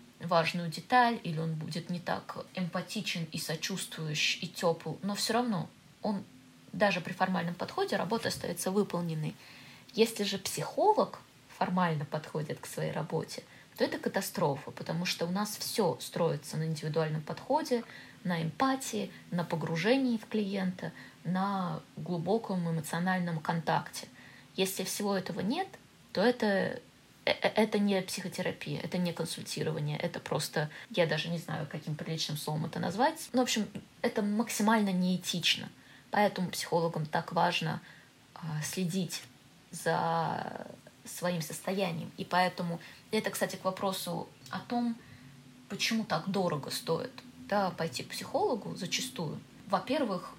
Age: 20-39